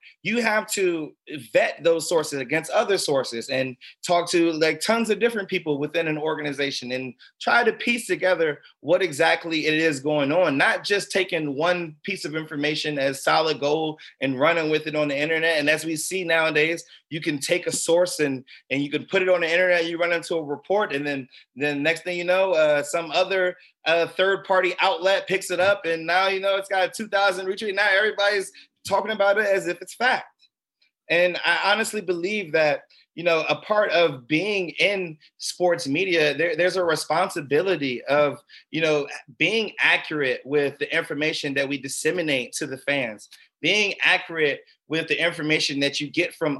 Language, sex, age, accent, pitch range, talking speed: English, male, 20-39, American, 150-190 Hz, 190 wpm